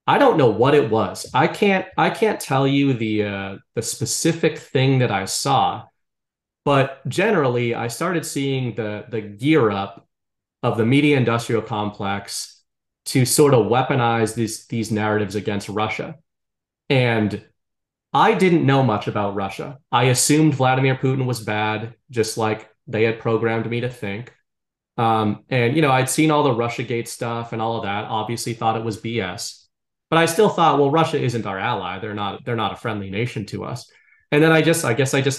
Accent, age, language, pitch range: American, 30-49, English, 110-145 Hz